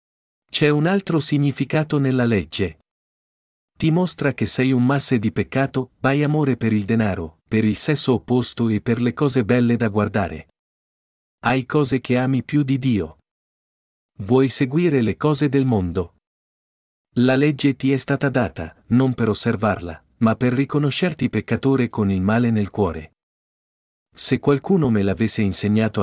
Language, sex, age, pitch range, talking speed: Italian, male, 50-69, 100-135 Hz, 150 wpm